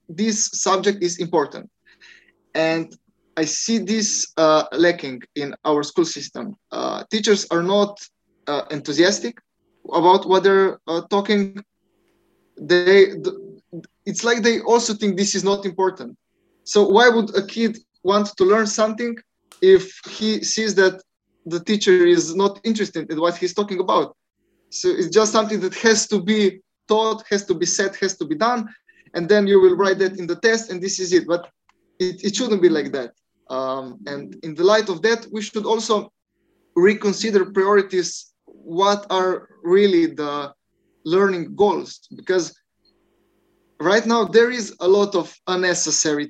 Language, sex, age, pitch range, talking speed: English, male, 20-39, 170-210 Hz, 160 wpm